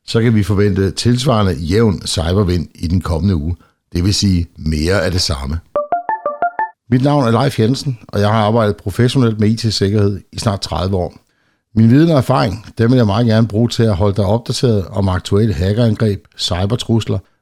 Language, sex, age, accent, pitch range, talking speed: Danish, male, 60-79, native, 95-130 Hz, 185 wpm